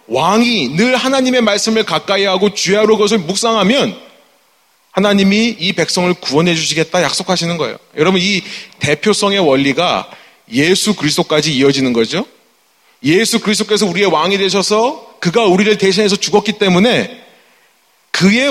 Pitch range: 175-225 Hz